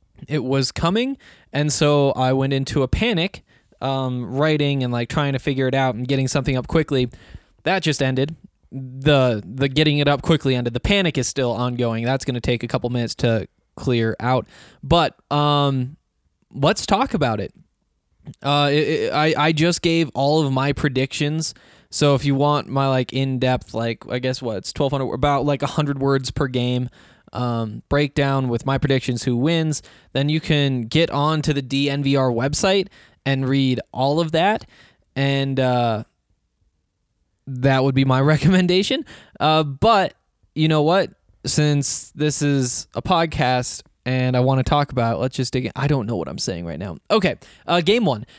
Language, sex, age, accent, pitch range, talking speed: English, male, 20-39, American, 130-150 Hz, 185 wpm